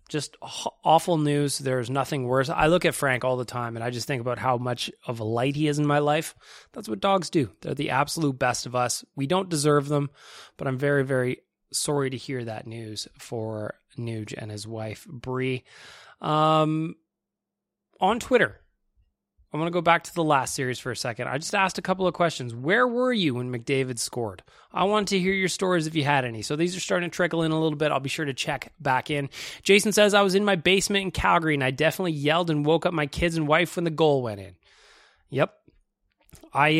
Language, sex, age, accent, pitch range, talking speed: English, male, 20-39, American, 120-165 Hz, 225 wpm